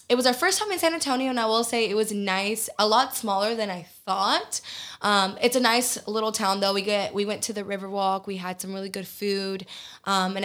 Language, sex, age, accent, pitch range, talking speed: English, female, 10-29, American, 195-230 Hz, 245 wpm